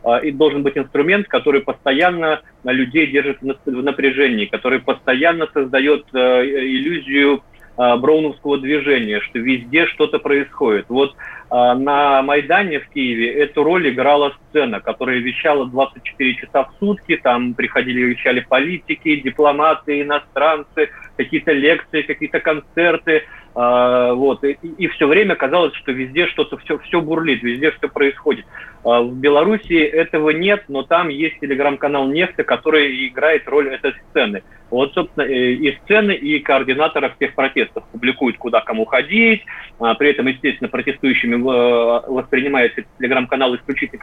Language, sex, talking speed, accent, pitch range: Russian, male, 125 wpm, native, 130-160 Hz